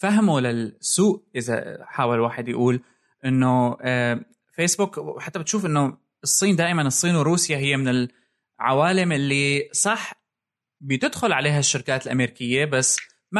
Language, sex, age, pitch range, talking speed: Arabic, male, 20-39, 125-165 Hz, 115 wpm